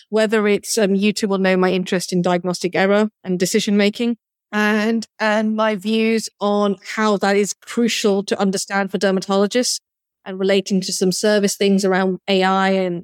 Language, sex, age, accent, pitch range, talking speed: English, female, 40-59, British, 185-220 Hz, 165 wpm